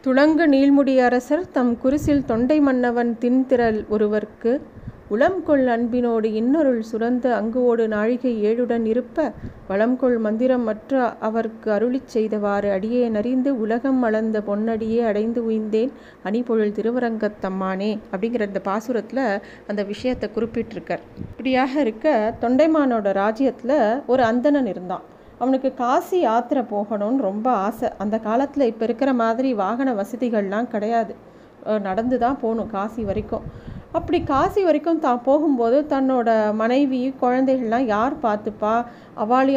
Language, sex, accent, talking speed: Tamil, female, native, 110 wpm